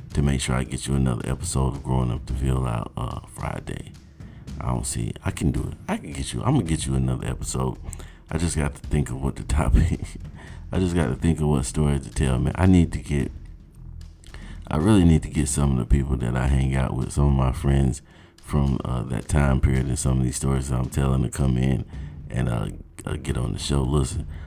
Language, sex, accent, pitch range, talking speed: English, male, American, 65-75 Hz, 240 wpm